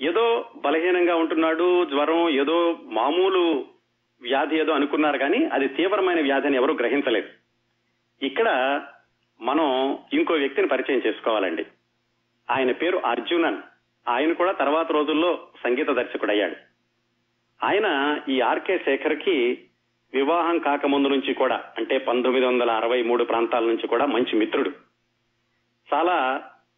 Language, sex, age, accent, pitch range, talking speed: Telugu, male, 40-59, native, 120-180 Hz, 115 wpm